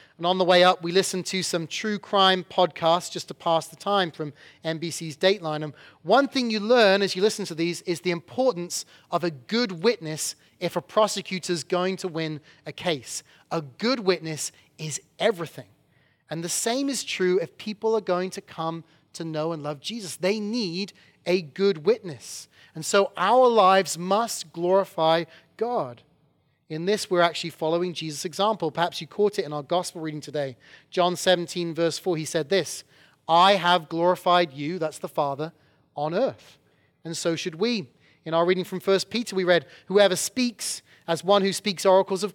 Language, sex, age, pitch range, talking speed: English, male, 30-49, 160-195 Hz, 185 wpm